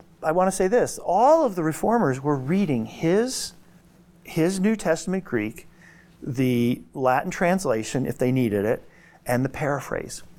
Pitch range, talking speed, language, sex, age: 125-180 Hz, 150 wpm, English, male, 40-59